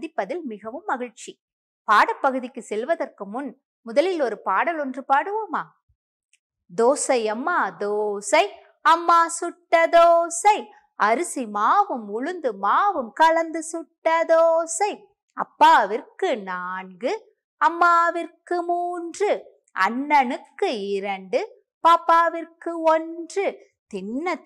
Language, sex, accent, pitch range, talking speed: Tamil, female, native, 250-350 Hz, 60 wpm